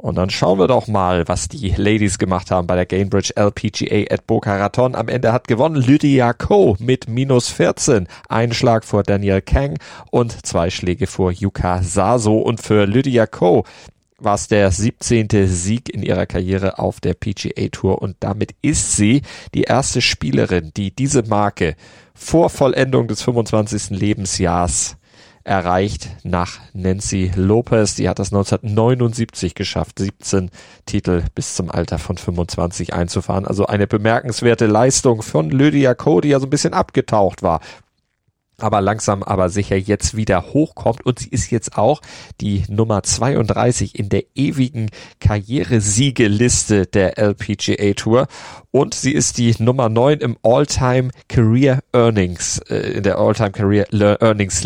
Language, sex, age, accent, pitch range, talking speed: German, male, 30-49, German, 95-120 Hz, 150 wpm